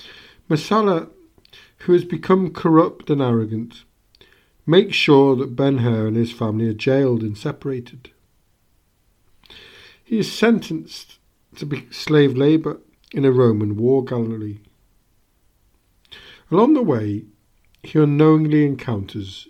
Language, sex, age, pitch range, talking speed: English, male, 50-69, 110-160 Hz, 115 wpm